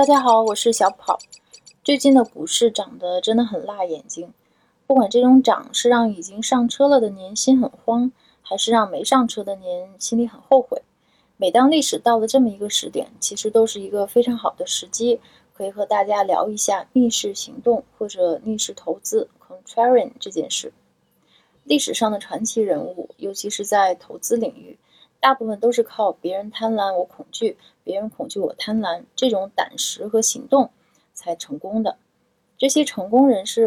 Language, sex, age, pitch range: Chinese, female, 20-39, 195-250 Hz